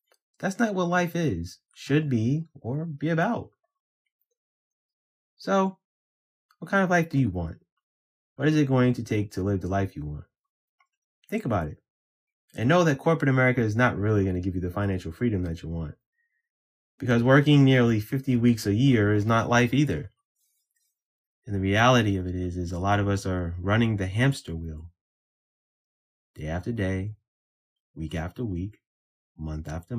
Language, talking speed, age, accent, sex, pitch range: English, 170 wpm, 20-39, American, male, 85-125 Hz